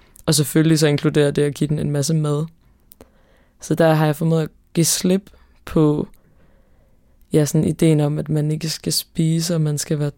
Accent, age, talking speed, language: native, 20-39, 195 wpm, Danish